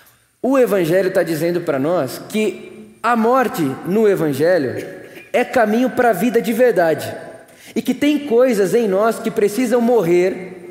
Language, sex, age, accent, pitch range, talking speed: Portuguese, male, 20-39, Brazilian, 160-230 Hz, 150 wpm